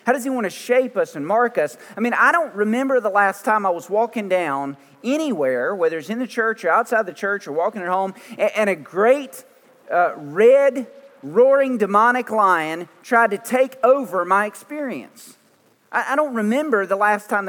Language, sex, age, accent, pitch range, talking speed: English, male, 40-59, American, 165-235 Hz, 190 wpm